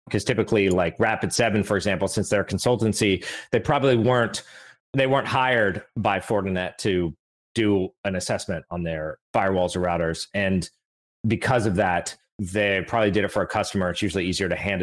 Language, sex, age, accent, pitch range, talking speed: English, male, 30-49, American, 95-135 Hz, 180 wpm